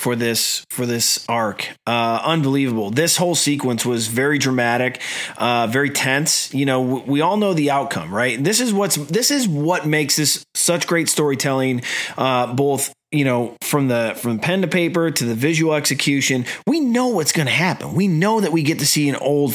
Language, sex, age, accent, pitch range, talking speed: English, male, 30-49, American, 135-180 Hz, 200 wpm